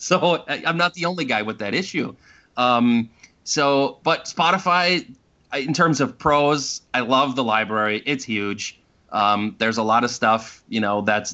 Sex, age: male, 30-49